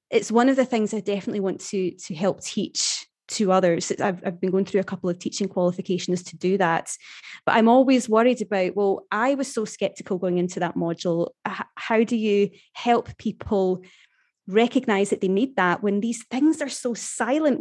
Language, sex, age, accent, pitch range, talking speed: English, female, 20-39, British, 190-235 Hz, 195 wpm